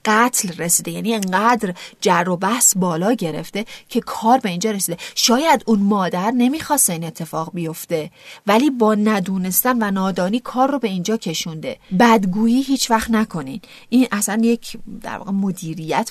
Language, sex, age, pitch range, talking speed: Persian, female, 40-59, 175-225 Hz, 155 wpm